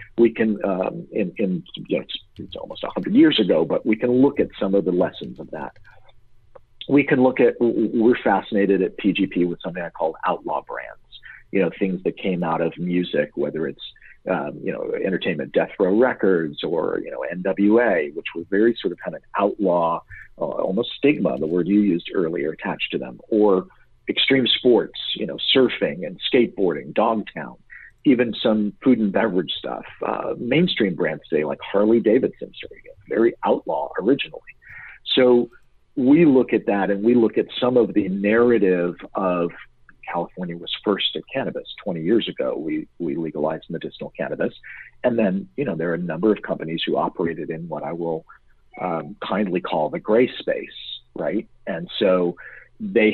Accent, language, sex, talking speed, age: American, English, male, 175 wpm, 50-69